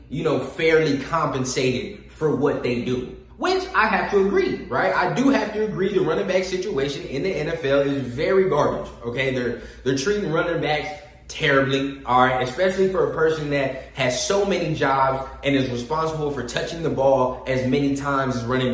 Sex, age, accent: male, 20-39, American